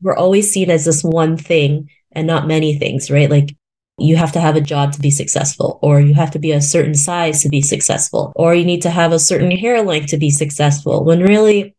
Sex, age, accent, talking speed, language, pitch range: female, 20-39, American, 240 wpm, English, 150-190 Hz